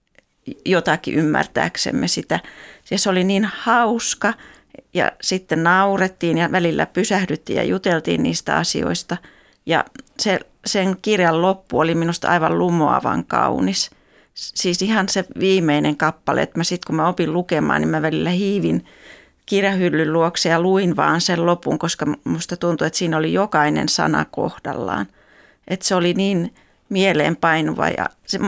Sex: female